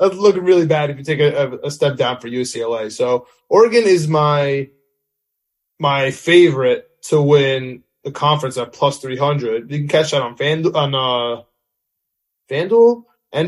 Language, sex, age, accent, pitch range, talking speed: English, male, 20-39, American, 140-185 Hz, 160 wpm